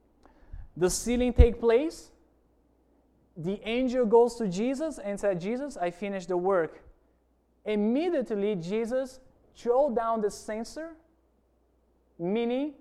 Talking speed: 110 wpm